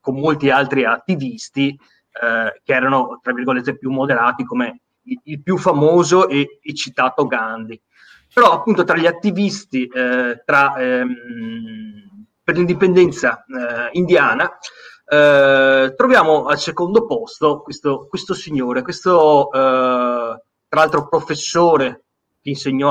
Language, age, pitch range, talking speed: Italian, 30-49, 130-180 Hz, 125 wpm